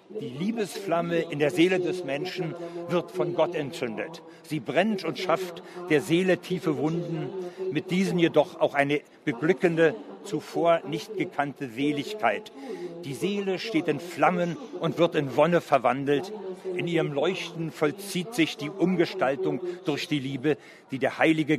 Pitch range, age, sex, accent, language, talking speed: 150-185 Hz, 50-69, male, German, Italian, 145 wpm